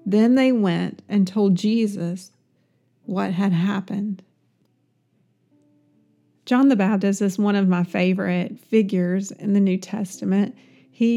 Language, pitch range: English, 200-240 Hz